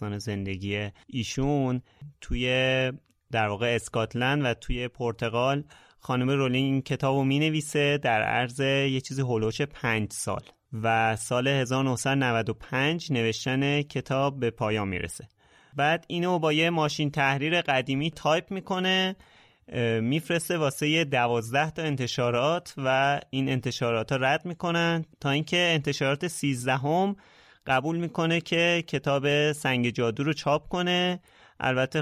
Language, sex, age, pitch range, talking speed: Persian, male, 30-49, 115-150 Hz, 130 wpm